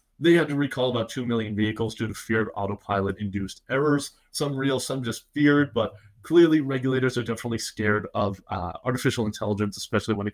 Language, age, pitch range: English, 30-49, 105-130 Hz